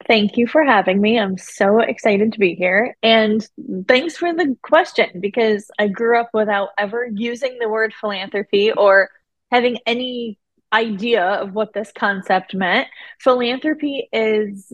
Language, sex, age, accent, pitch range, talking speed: English, female, 20-39, American, 195-235 Hz, 150 wpm